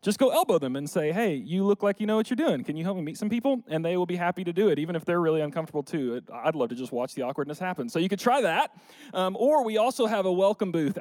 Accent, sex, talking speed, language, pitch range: American, male, 310 wpm, English, 140-195 Hz